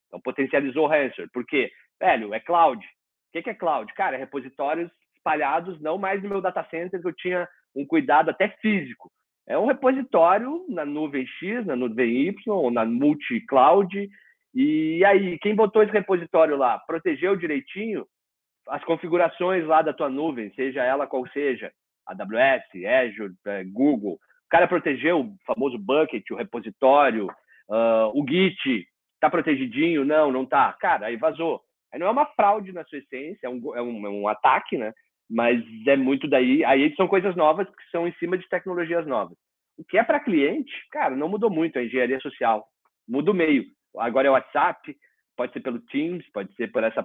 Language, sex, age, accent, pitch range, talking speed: Portuguese, male, 40-59, Brazilian, 130-195 Hz, 175 wpm